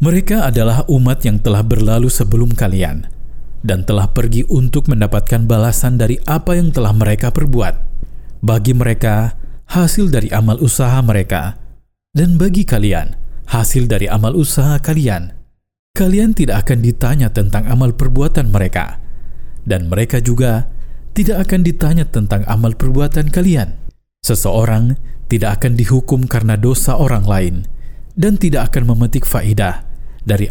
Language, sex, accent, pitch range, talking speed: Indonesian, male, native, 110-135 Hz, 130 wpm